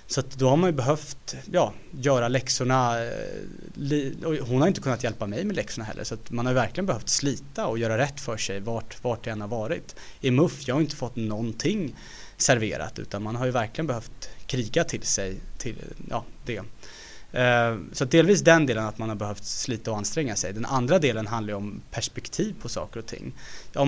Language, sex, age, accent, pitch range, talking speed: Swedish, male, 20-39, Norwegian, 110-130 Hz, 205 wpm